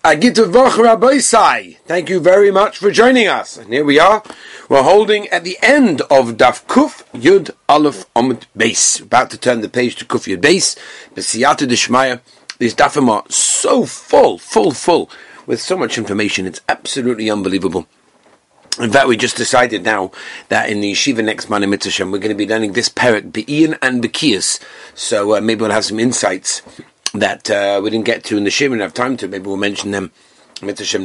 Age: 40-59